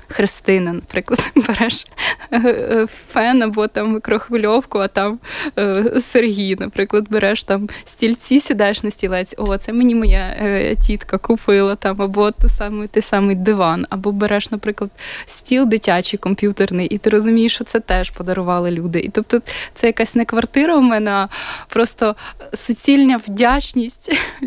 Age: 20-39